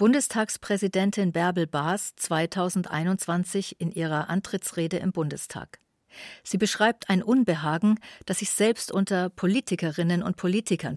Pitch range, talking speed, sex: 165-210 Hz, 105 wpm, female